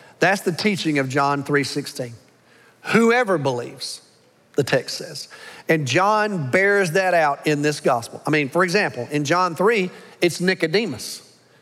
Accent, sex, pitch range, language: American, male, 155-210 Hz, English